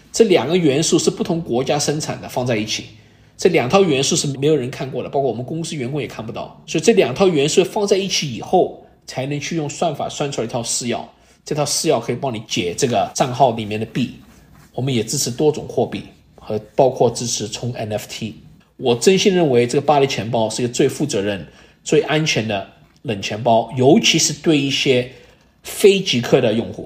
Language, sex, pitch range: English, male, 125-165 Hz